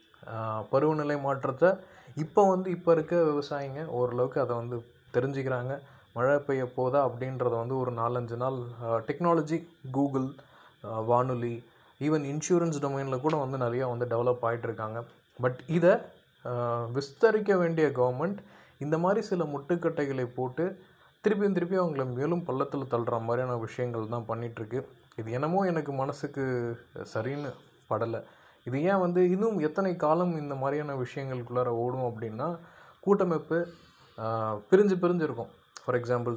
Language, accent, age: Tamil, native, 20-39